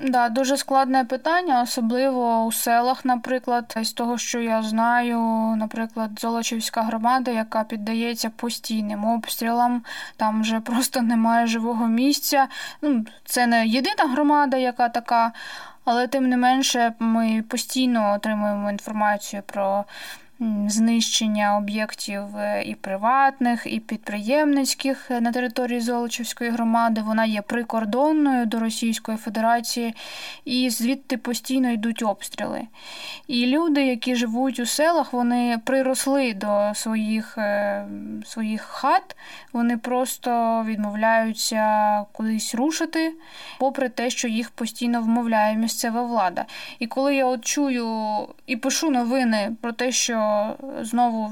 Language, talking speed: Ukrainian, 120 wpm